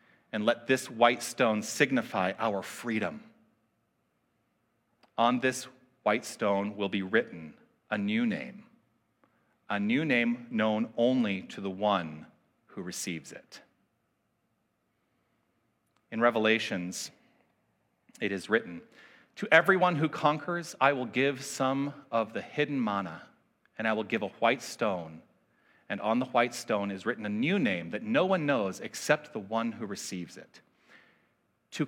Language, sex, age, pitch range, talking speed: English, male, 40-59, 105-135 Hz, 140 wpm